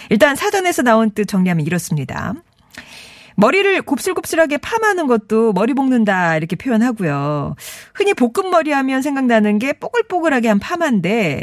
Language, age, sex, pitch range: Korean, 40-59, female, 185-300 Hz